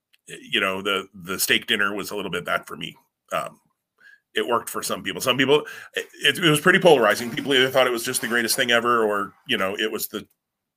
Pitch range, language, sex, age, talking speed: 110-170 Hz, English, male, 30-49, 235 wpm